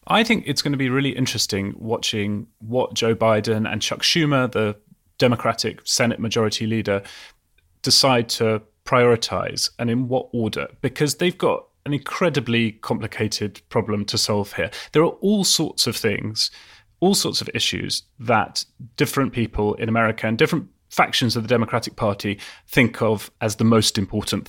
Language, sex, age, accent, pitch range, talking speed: English, male, 30-49, British, 110-140 Hz, 160 wpm